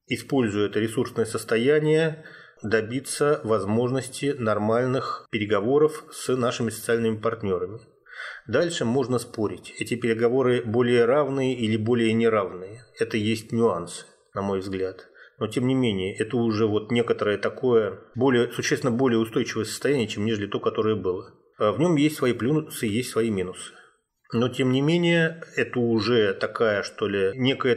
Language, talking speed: Russian, 140 wpm